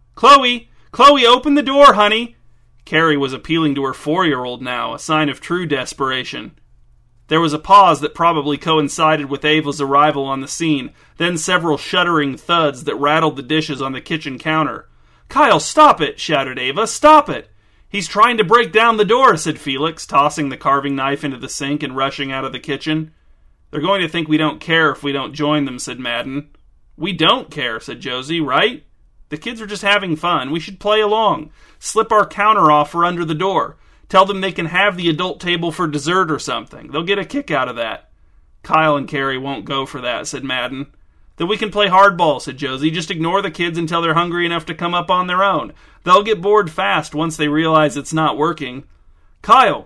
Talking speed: 205 wpm